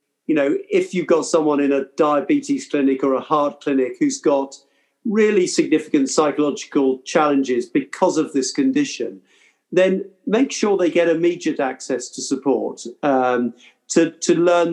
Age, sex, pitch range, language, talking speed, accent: 50-69, male, 140-180 Hz, English, 150 wpm, British